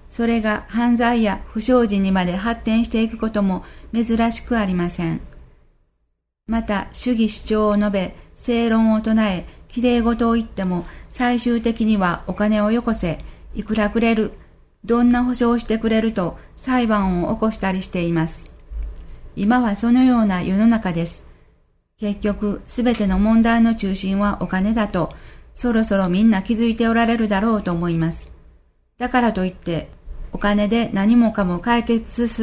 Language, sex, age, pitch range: Japanese, female, 40-59, 185-230 Hz